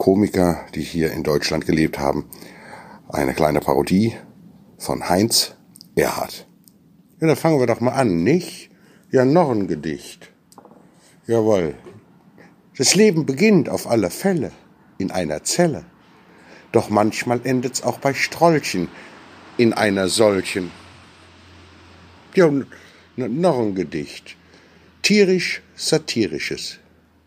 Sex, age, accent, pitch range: male, 60-79, German, 95-150 Hz